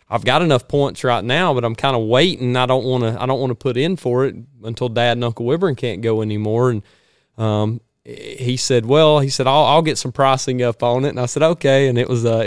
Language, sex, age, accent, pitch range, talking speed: English, male, 30-49, American, 120-155 Hz, 260 wpm